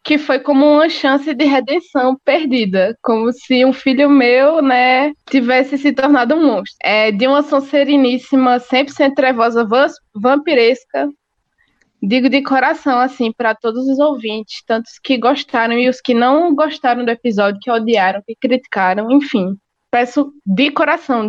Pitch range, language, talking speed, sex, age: 235-275 Hz, Portuguese, 150 wpm, female, 20-39